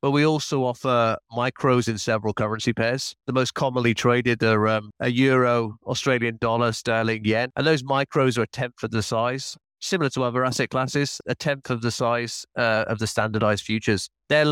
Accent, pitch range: British, 115-130 Hz